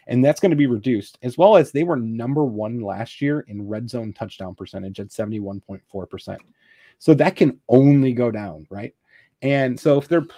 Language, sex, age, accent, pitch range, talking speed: English, male, 30-49, American, 115-145 Hz, 215 wpm